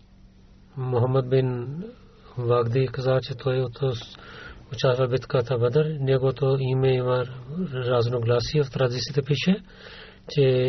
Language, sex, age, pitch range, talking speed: Bulgarian, male, 40-59, 120-140 Hz, 110 wpm